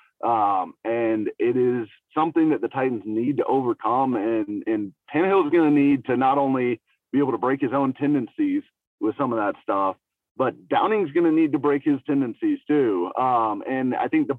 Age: 30-49